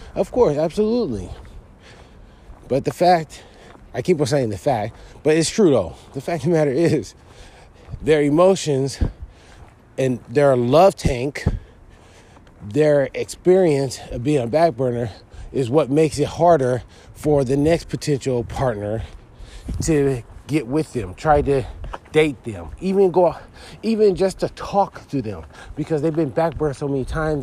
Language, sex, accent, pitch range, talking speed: English, male, American, 125-180 Hz, 145 wpm